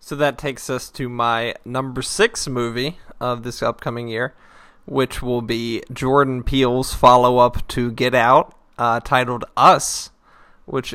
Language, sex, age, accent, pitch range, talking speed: English, male, 20-39, American, 120-140 Hz, 145 wpm